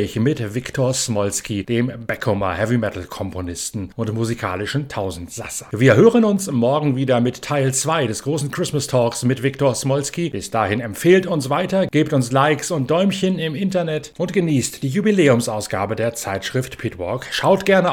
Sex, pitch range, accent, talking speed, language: male, 105-145 Hz, German, 150 wpm, German